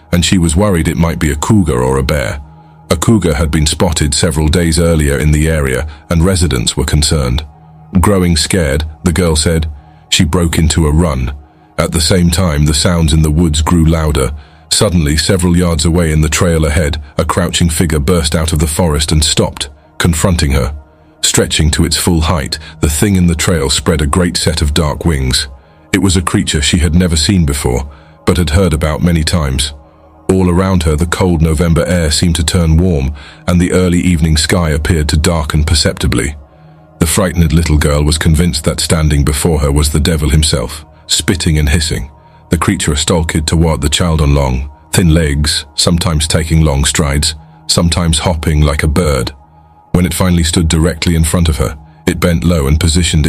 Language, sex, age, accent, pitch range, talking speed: English, male, 40-59, British, 75-90 Hz, 190 wpm